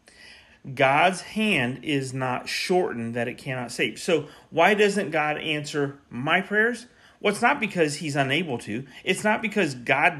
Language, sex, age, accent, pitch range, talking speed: English, male, 40-59, American, 120-170 Hz, 160 wpm